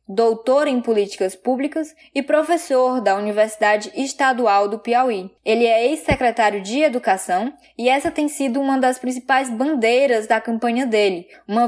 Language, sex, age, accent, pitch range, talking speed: Portuguese, female, 10-29, Brazilian, 220-265 Hz, 145 wpm